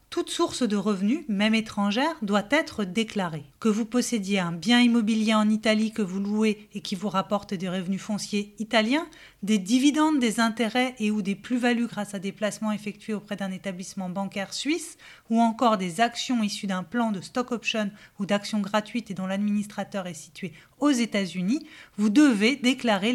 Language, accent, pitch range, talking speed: French, French, 200-245 Hz, 180 wpm